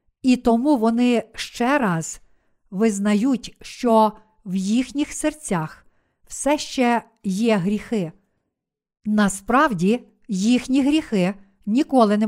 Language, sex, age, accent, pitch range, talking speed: Ukrainian, female, 50-69, native, 210-255 Hz, 95 wpm